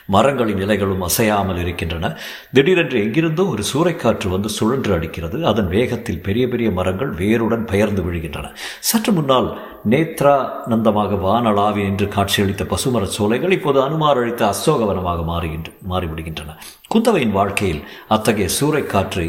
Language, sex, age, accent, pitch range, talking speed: Tamil, male, 50-69, native, 95-120 Hz, 110 wpm